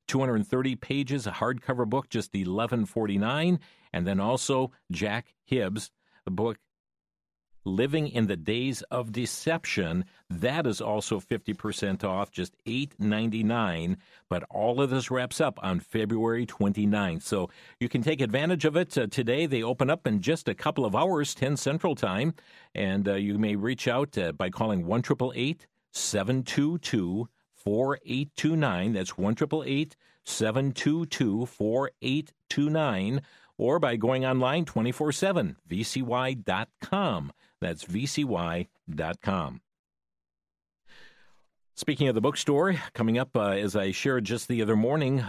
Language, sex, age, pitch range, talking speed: English, male, 50-69, 110-145 Hz, 125 wpm